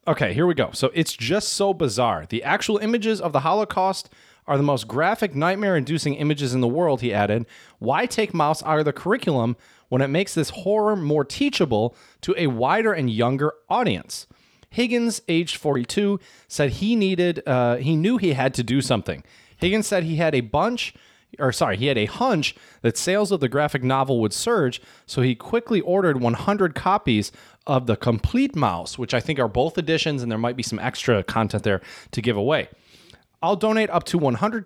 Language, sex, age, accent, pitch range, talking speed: English, male, 30-49, American, 120-185 Hz, 195 wpm